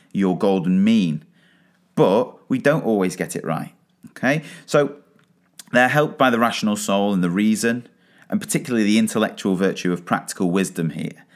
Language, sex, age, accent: English, male, 30-49, British